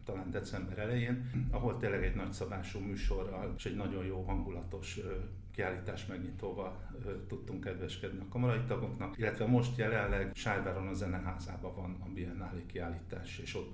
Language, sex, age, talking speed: Hungarian, male, 50-69, 150 wpm